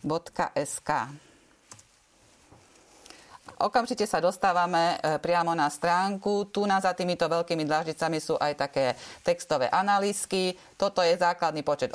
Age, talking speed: 30-49, 110 wpm